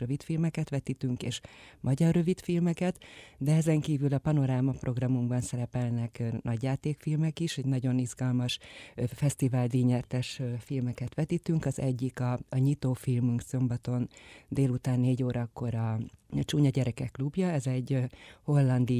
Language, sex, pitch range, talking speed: Hungarian, female, 120-140 Hz, 135 wpm